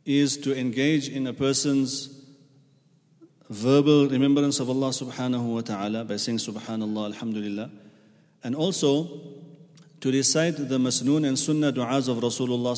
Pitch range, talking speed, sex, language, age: 125-150 Hz, 130 wpm, male, English, 40-59